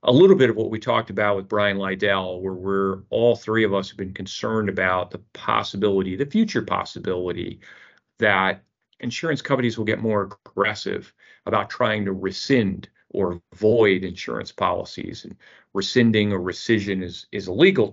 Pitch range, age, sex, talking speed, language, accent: 95-110 Hz, 40-59, male, 165 wpm, English, American